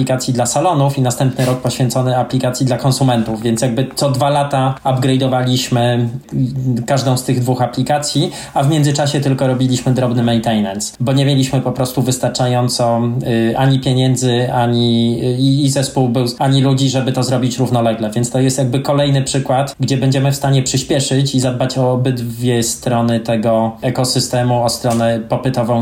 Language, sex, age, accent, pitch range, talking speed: Polish, male, 20-39, native, 120-135 Hz, 150 wpm